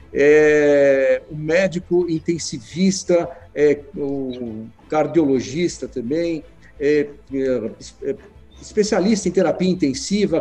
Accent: Brazilian